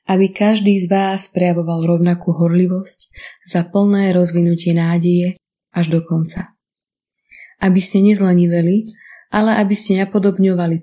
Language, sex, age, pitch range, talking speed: Slovak, female, 20-39, 175-195 Hz, 115 wpm